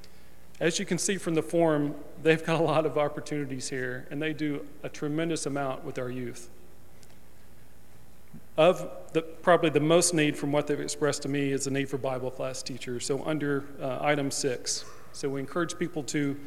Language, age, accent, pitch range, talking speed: English, 40-59, American, 130-155 Hz, 190 wpm